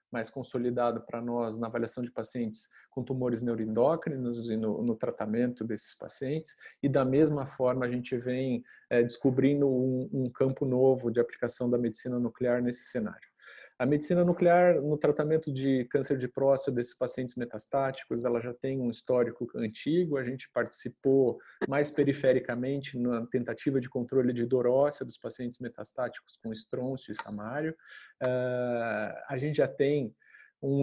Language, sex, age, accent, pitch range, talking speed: Portuguese, male, 40-59, Brazilian, 120-135 Hz, 155 wpm